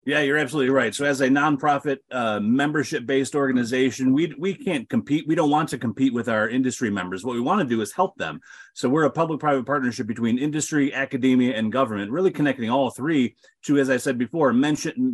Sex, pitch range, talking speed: male, 130-150 Hz, 205 wpm